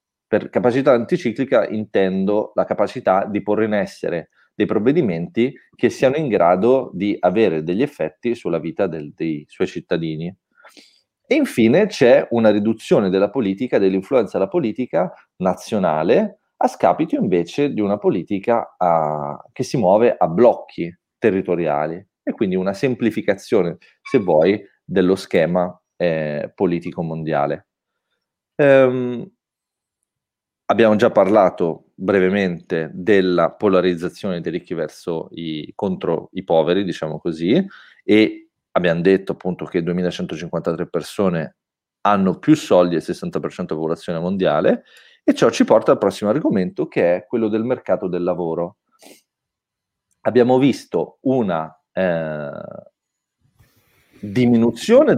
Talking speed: 120 wpm